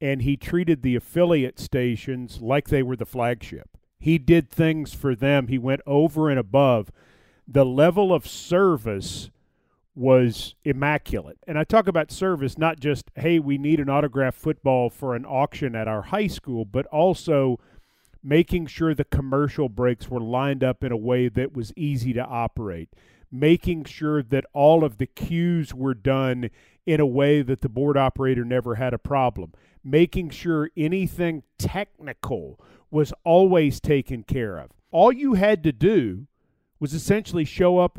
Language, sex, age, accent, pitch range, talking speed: English, male, 40-59, American, 125-160 Hz, 165 wpm